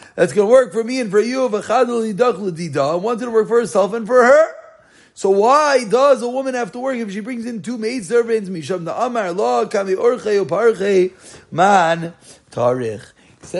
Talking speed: 150 wpm